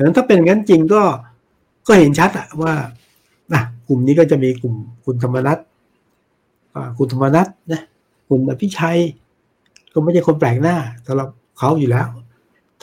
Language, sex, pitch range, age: Thai, male, 120-155 Hz, 60-79